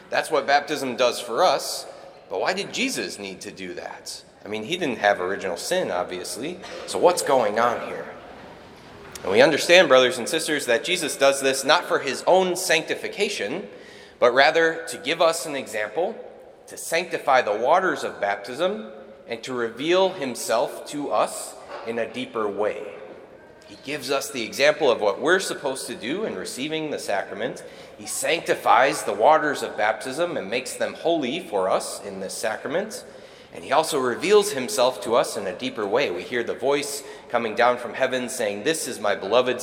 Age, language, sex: 30-49, English, male